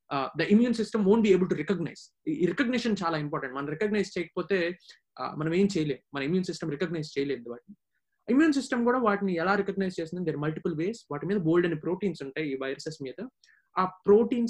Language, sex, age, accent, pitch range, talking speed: Telugu, male, 20-39, native, 160-215 Hz, 205 wpm